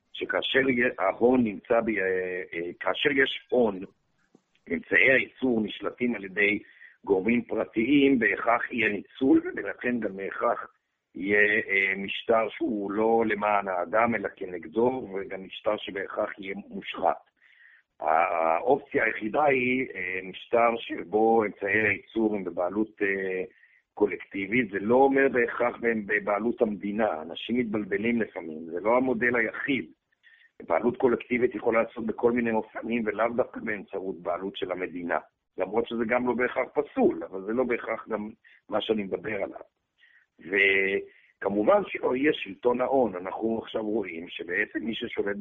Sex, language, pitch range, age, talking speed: male, Hebrew, 100-130 Hz, 60-79, 125 wpm